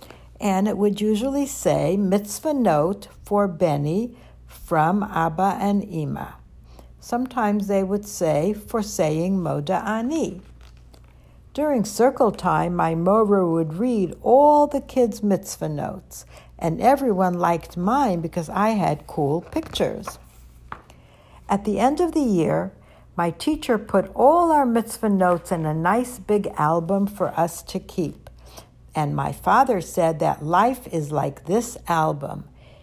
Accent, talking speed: American, 135 wpm